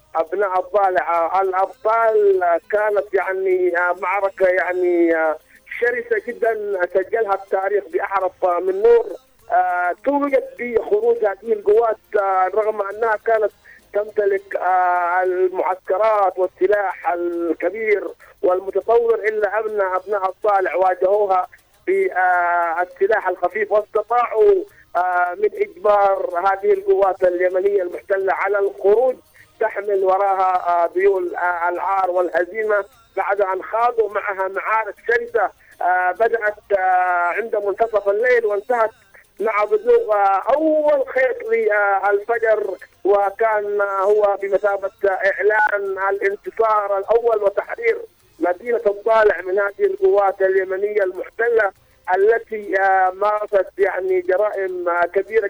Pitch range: 185-220 Hz